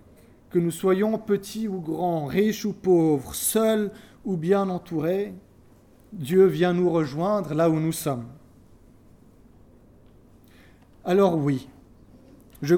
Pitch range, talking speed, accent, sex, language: 120-185 Hz, 115 wpm, French, male, French